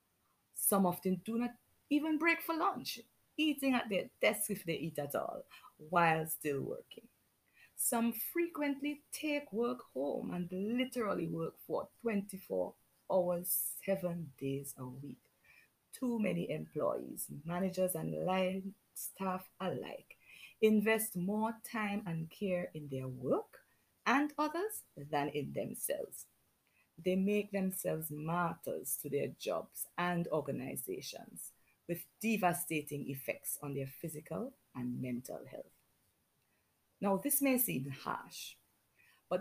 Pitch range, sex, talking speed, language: 160-235 Hz, female, 120 wpm, English